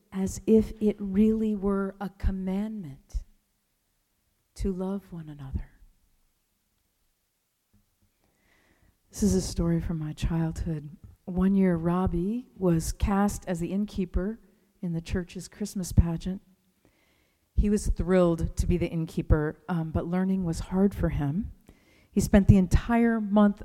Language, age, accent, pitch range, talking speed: English, 40-59, American, 165-210 Hz, 125 wpm